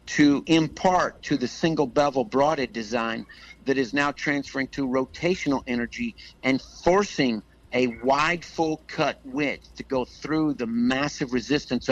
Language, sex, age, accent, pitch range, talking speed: English, male, 60-79, American, 115-145 Hz, 130 wpm